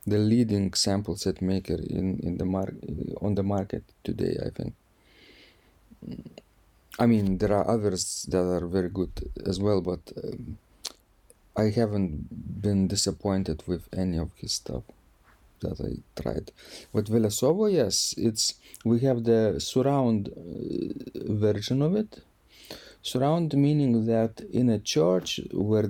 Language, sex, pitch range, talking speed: English, male, 95-115 Hz, 135 wpm